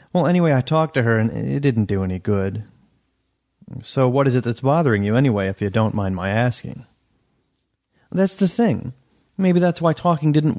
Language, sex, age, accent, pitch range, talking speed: English, male, 30-49, American, 115-170 Hz, 195 wpm